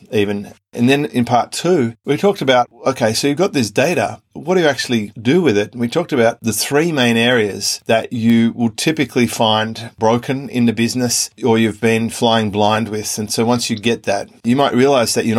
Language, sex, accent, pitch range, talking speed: English, male, Australian, 110-125 Hz, 215 wpm